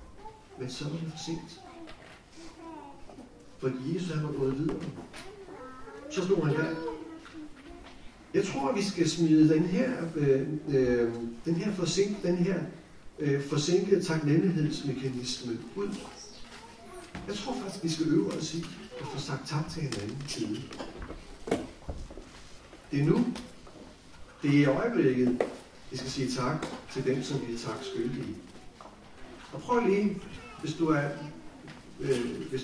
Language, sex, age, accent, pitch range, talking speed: Danish, male, 60-79, native, 140-195 Hz, 135 wpm